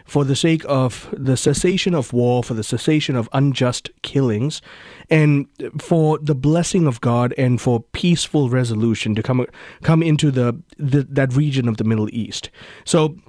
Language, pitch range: English, 120-155 Hz